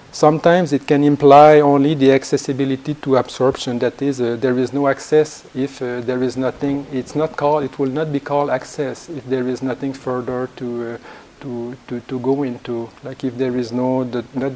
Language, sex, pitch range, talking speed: English, male, 125-140 Hz, 200 wpm